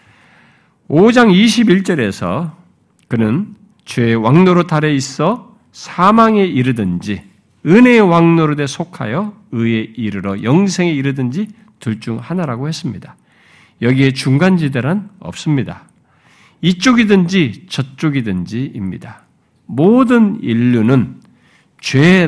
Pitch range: 115-195 Hz